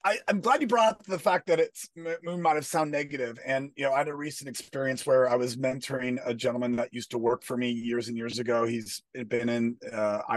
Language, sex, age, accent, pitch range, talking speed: English, male, 30-49, American, 135-195 Hz, 245 wpm